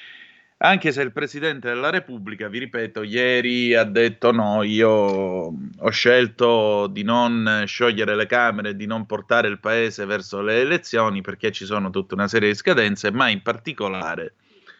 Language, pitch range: Italian, 105-125 Hz